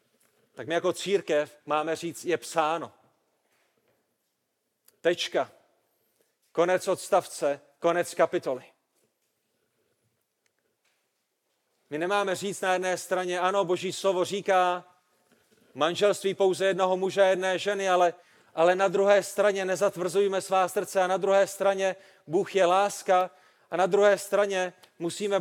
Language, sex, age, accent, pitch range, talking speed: Czech, male, 40-59, native, 185-200 Hz, 120 wpm